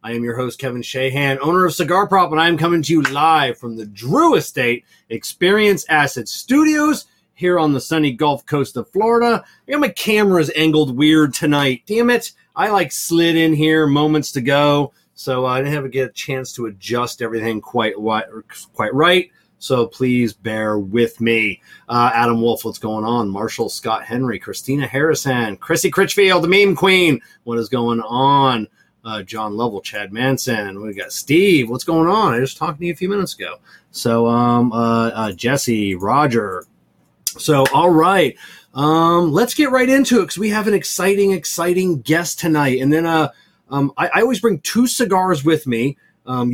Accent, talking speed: American, 185 wpm